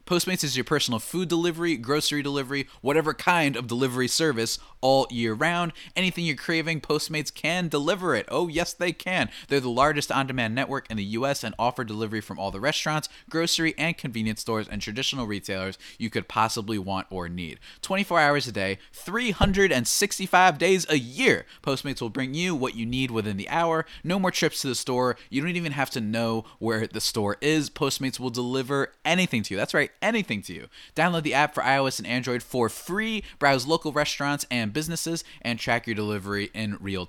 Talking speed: 195 wpm